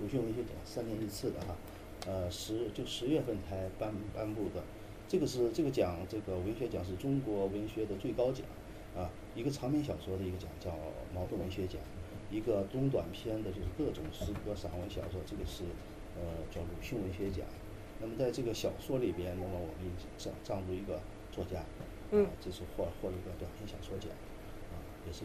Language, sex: Czech, male